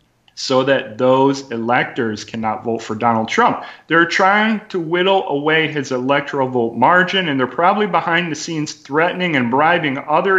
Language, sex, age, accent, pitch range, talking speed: English, male, 40-59, American, 125-170 Hz, 160 wpm